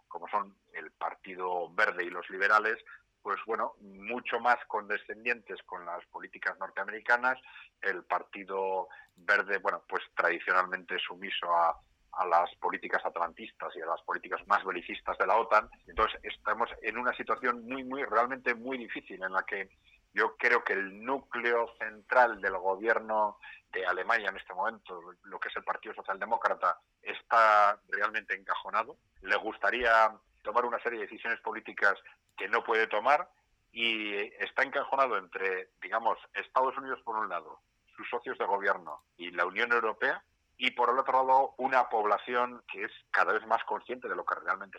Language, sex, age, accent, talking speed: Spanish, male, 40-59, Spanish, 160 wpm